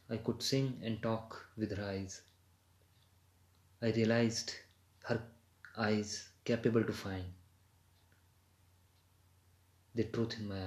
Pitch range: 90-105 Hz